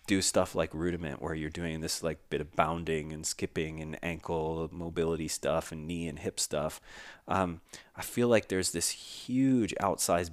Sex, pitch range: male, 80-95 Hz